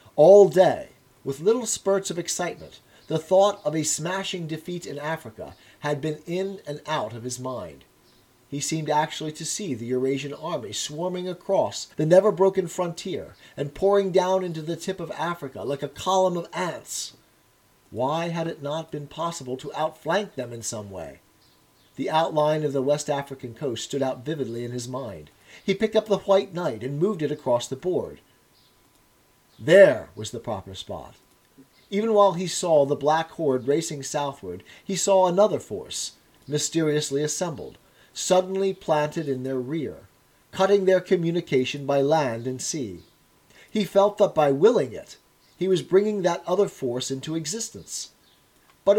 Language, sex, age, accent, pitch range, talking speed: English, male, 40-59, American, 140-190 Hz, 165 wpm